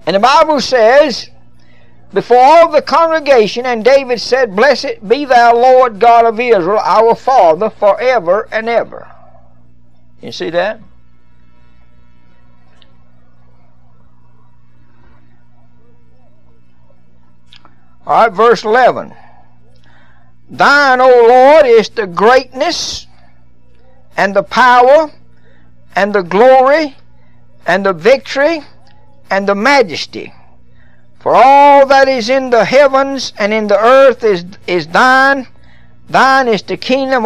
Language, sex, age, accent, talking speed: English, male, 60-79, American, 105 wpm